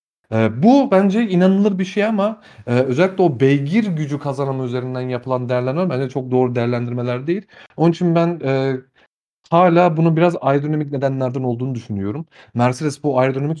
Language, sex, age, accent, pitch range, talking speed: Turkish, male, 40-59, native, 115-150 Hz, 155 wpm